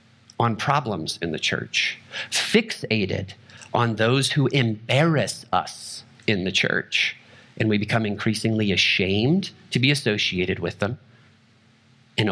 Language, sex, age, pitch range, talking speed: English, male, 40-59, 100-125 Hz, 120 wpm